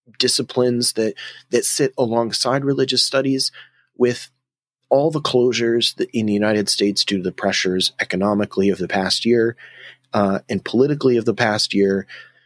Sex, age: male, 30-49